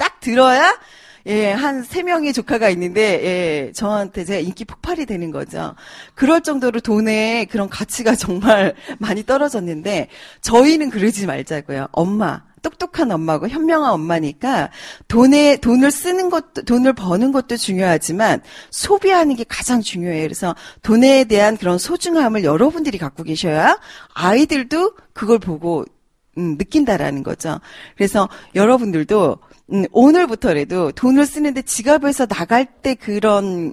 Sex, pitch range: female, 185-290 Hz